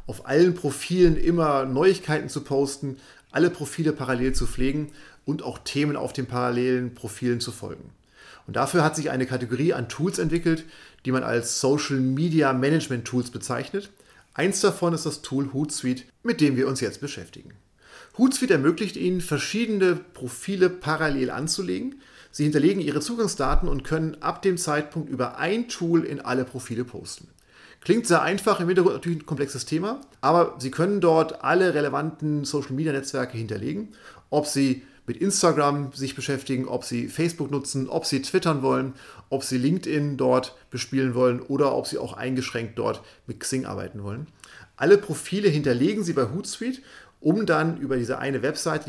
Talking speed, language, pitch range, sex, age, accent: 160 wpm, German, 130-165 Hz, male, 40-59, German